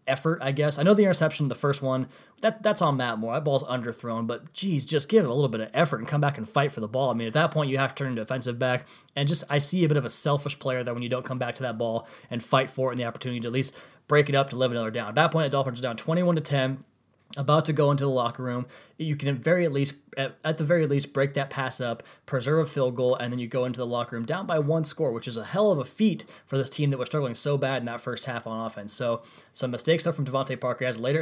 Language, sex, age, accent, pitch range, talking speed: English, male, 20-39, American, 125-145 Hz, 315 wpm